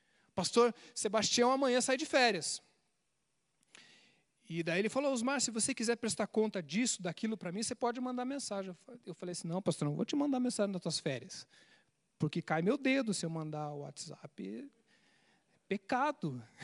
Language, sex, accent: Portuguese, male, Brazilian